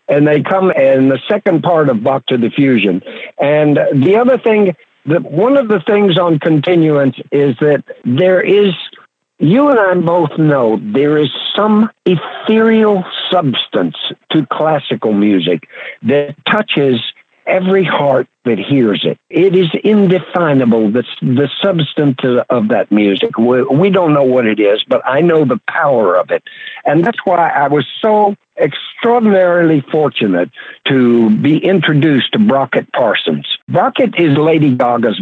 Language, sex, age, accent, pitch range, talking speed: English, male, 60-79, American, 130-190 Hz, 145 wpm